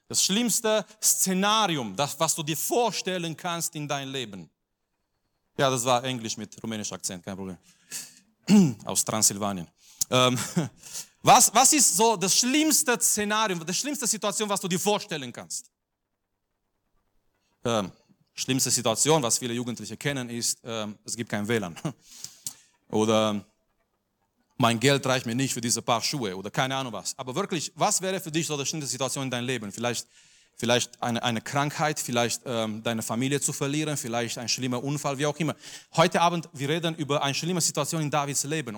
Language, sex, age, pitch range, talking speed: German, male, 40-59, 125-170 Hz, 165 wpm